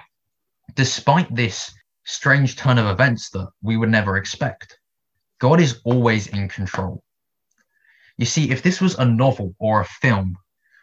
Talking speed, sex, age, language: 145 wpm, male, 20-39, English